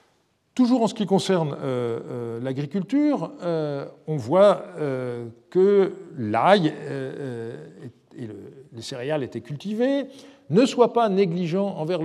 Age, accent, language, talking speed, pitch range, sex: 50-69, French, French, 135 wpm, 140-200 Hz, male